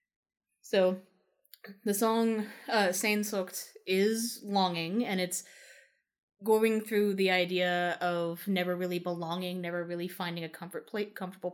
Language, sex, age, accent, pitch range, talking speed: English, female, 20-39, American, 175-205 Hz, 125 wpm